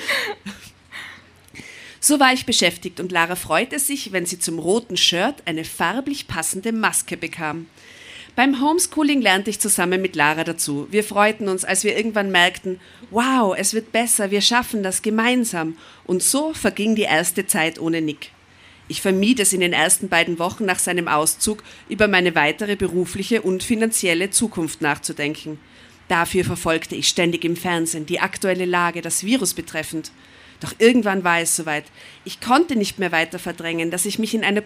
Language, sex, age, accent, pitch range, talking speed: German, female, 40-59, German, 170-230 Hz, 165 wpm